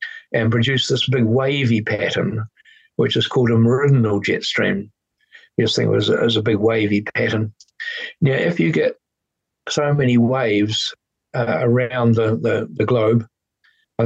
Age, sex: 60-79, male